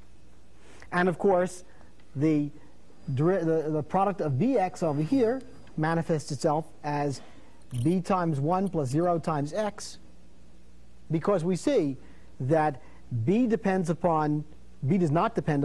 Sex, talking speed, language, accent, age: male, 125 wpm, English, American, 50-69